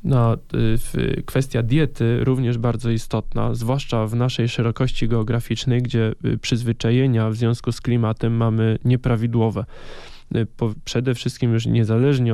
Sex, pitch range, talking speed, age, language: male, 110-125 Hz, 115 wpm, 10-29, Polish